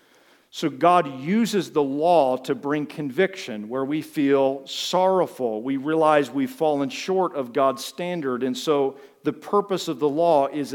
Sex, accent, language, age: male, American, English, 50-69